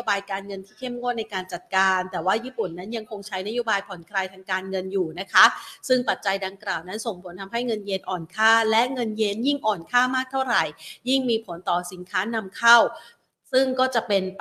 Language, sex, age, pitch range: Thai, female, 30-49, 195-245 Hz